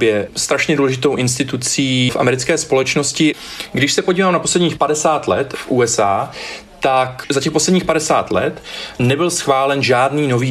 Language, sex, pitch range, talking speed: Czech, male, 120-150 Hz, 145 wpm